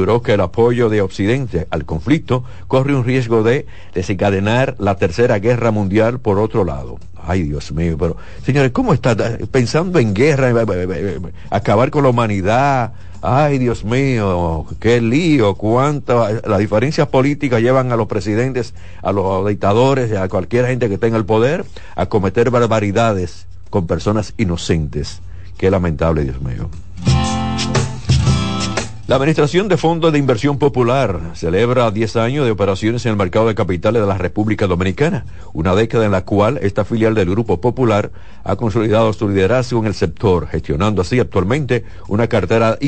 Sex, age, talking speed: male, 60-79, 160 wpm